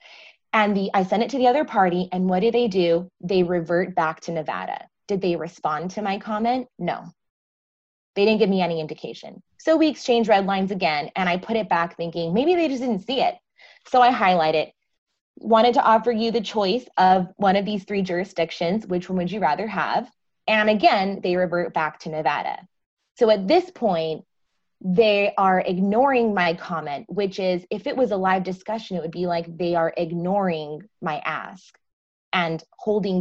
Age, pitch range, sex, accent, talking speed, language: 20-39, 170-210 Hz, female, American, 190 wpm, English